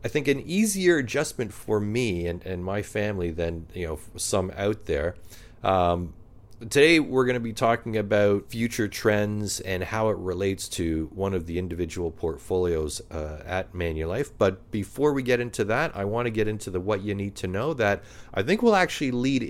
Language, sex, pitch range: English, male, 90-115 Hz